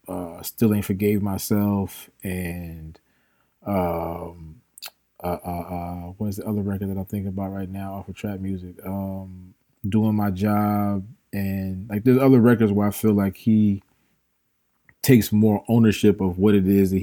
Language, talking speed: English, 160 wpm